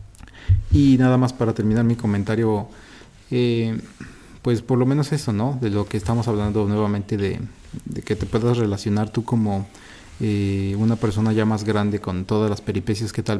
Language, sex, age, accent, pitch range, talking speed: Spanish, male, 30-49, Mexican, 105-115 Hz, 180 wpm